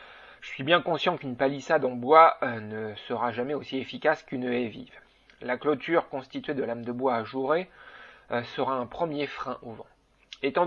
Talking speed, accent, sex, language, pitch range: 175 wpm, French, male, French, 125-155 Hz